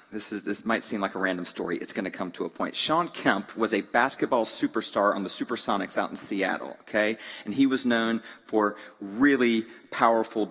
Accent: American